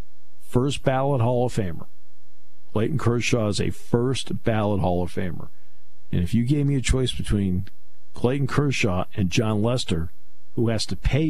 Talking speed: 165 wpm